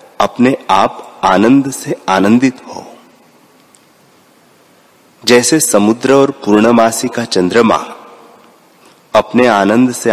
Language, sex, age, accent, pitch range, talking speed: Hindi, male, 30-49, native, 100-120 Hz, 90 wpm